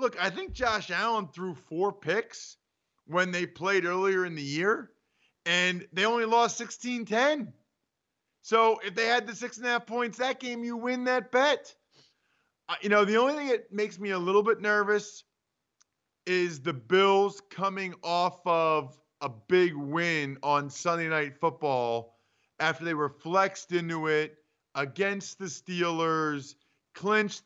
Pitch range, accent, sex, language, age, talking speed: 145-200 Hz, American, male, English, 40-59, 155 wpm